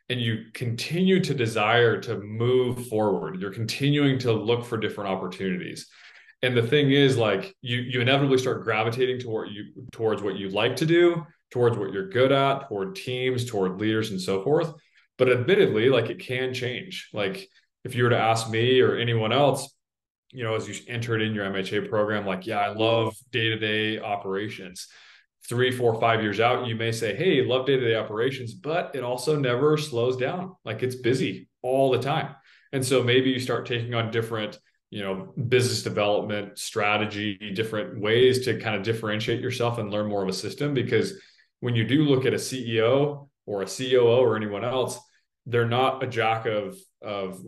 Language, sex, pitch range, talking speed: English, male, 105-130 Hz, 185 wpm